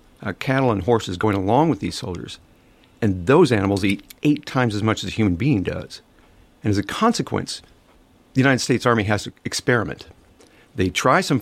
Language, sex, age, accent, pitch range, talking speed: English, male, 50-69, American, 100-130 Hz, 190 wpm